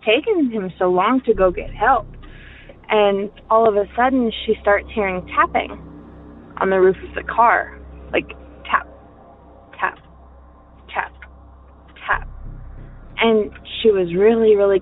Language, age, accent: English, 20-39, American